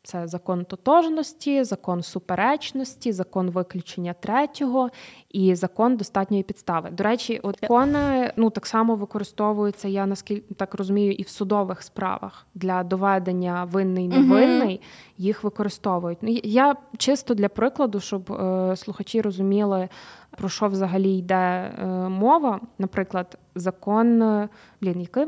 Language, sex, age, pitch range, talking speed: Ukrainian, female, 20-39, 190-235 Hz, 115 wpm